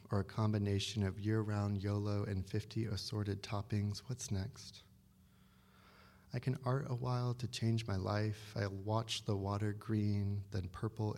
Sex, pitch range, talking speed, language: male, 100-110 Hz, 155 wpm, English